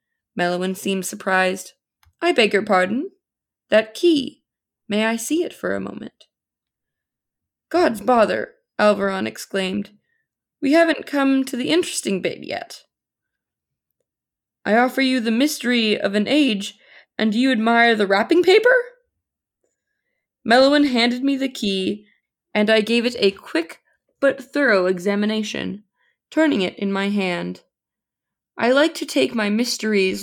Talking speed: 135 wpm